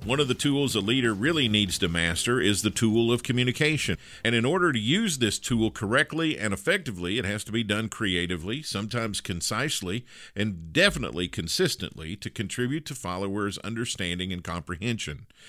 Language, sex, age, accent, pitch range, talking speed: English, male, 50-69, American, 100-135 Hz, 165 wpm